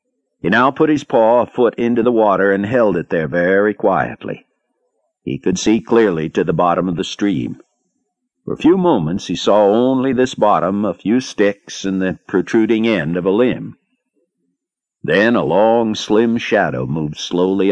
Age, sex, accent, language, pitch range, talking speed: 60-79, male, American, English, 95-125 Hz, 175 wpm